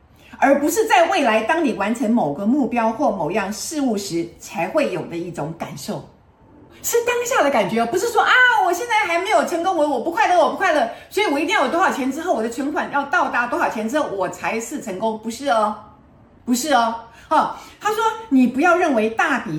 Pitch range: 170-280 Hz